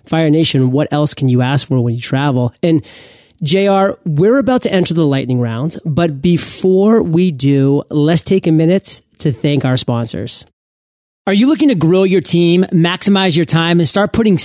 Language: English